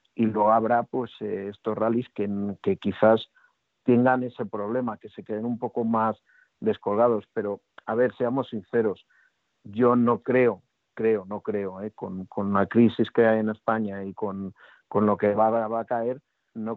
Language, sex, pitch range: Spanish, male, 105-120 Hz